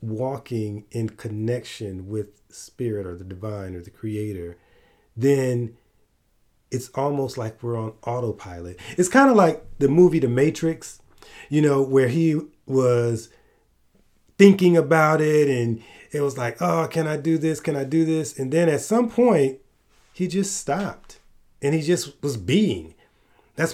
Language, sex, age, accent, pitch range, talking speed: English, male, 30-49, American, 110-155 Hz, 155 wpm